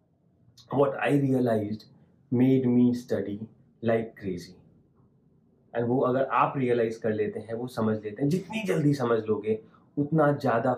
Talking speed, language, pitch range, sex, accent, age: 145 wpm, Hindi, 125-160 Hz, male, native, 30-49